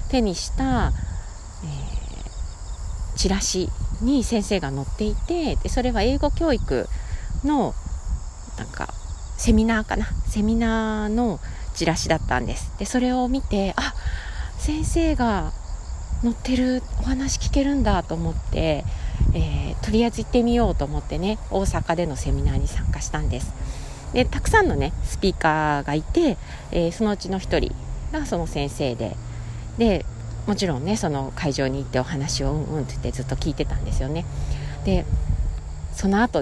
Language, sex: Japanese, female